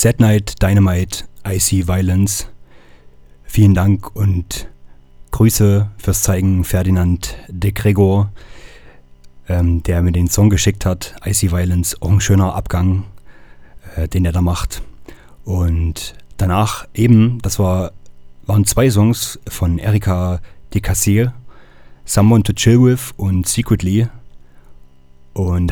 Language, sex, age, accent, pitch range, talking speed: German, male, 30-49, German, 90-100 Hz, 120 wpm